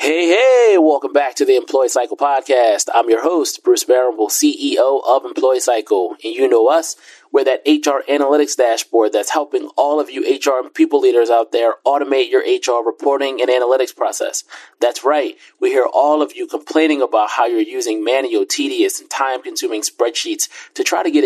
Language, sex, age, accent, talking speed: English, male, 30-49, American, 185 wpm